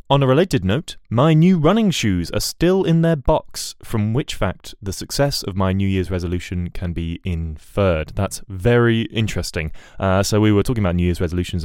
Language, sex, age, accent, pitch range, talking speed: English, male, 20-39, British, 90-140 Hz, 195 wpm